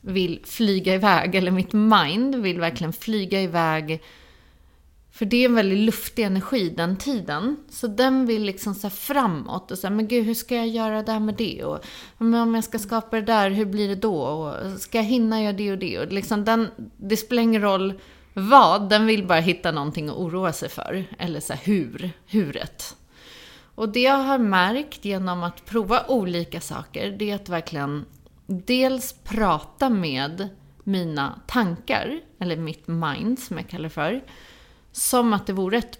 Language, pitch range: Swedish, 175-230 Hz